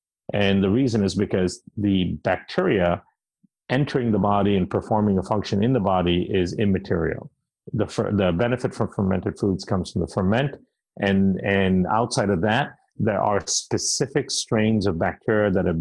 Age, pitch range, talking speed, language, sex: 50-69, 90-105 Hz, 160 wpm, English, male